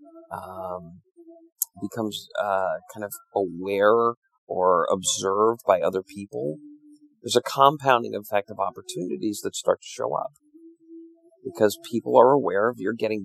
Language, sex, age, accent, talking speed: English, male, 40-59, American, 130 wpm